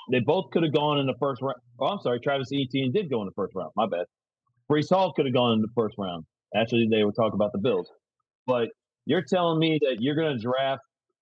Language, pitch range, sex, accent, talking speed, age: English, 120-155 Hz, male, American, 250 wpm, 40-59